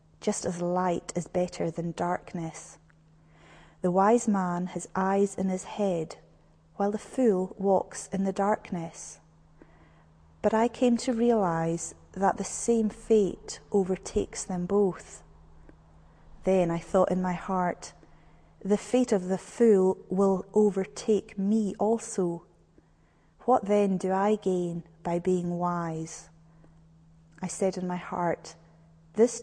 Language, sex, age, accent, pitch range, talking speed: English, female, 30-49, British, 165-200 Hz, 130 wpm